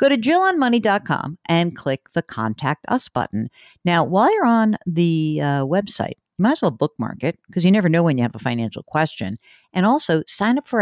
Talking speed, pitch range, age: 205 wpm, 145-210 Hz, 50-69